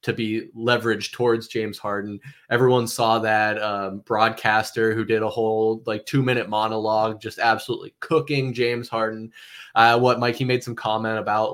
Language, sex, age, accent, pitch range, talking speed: English, male, 20-39, American, 110-125 Hz, 165 wpm